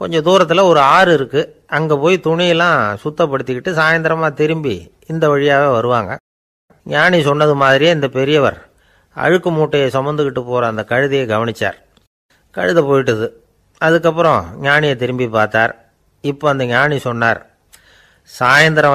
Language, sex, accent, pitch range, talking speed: Tamil, male, native, 120-160 Hz, 115 wpm